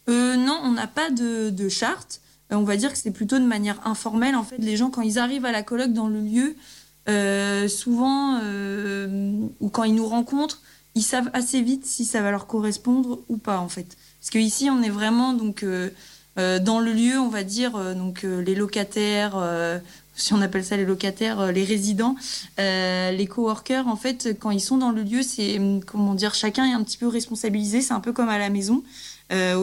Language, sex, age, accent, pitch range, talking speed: French, female, 20-39, French, 190-235 Hz, 220 wpm